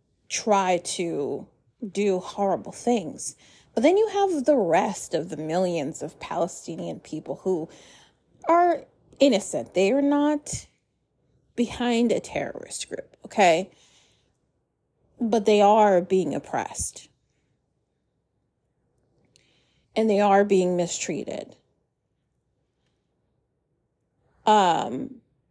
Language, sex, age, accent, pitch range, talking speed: English, female, 30-49, American, 185-245 Hz, 90 wpm